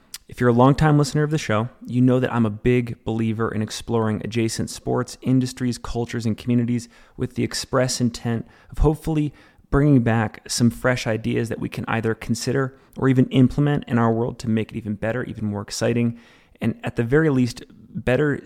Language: English